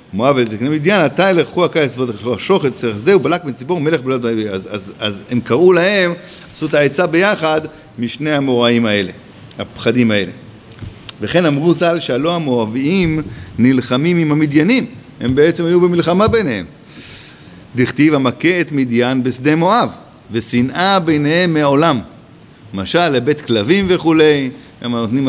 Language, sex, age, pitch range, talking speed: Hebrew, male, 50-69, 115-155 Hz, 140 wpm